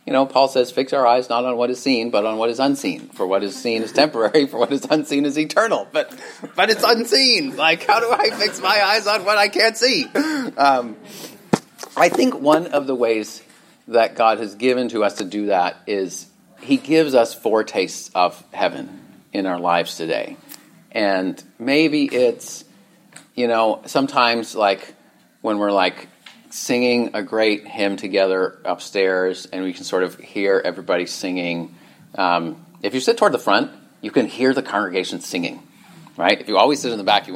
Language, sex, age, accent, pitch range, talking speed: English, male, 40-59, American, 110-155 Hz, 190 wpm